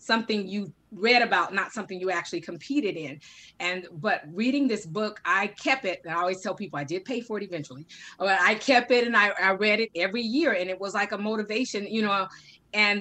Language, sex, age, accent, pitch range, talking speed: English, female, 30-49, American, 180-215 Hz, 225 wpm